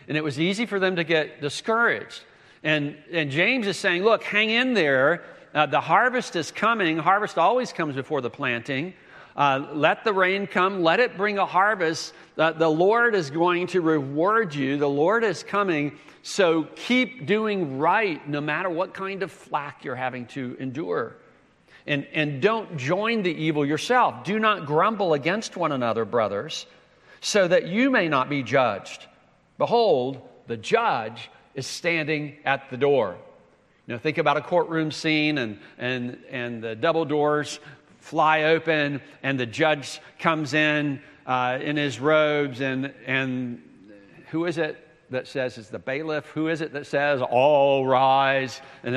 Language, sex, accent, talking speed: English, male, American, 165 wpm